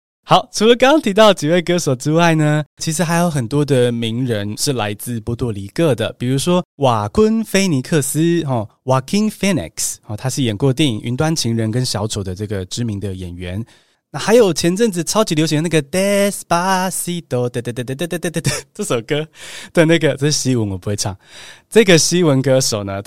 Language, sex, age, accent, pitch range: Chinese, male, 20-39, native, 115-170 Hz